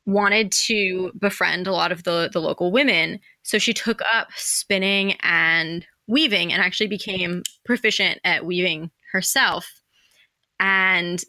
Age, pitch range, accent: 20-39, 180-215 Hz, American